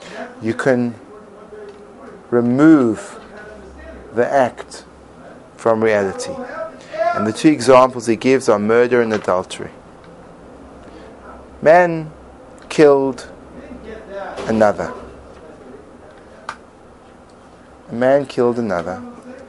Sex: male